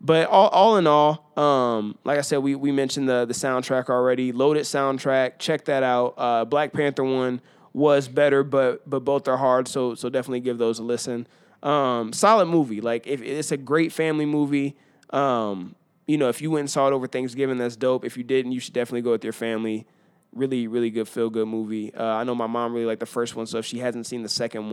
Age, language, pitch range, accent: 20-39, English, 115-135 Hz, American